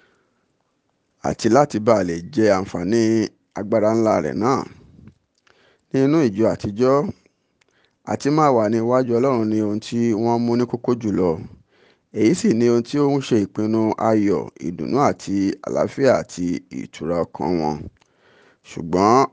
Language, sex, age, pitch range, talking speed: English, male, 50-69, 100-125 Hz, 130 wpm